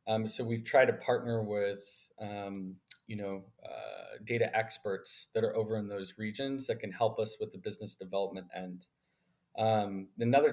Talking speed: 170 wpm